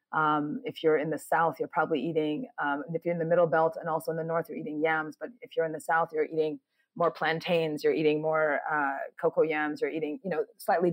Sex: female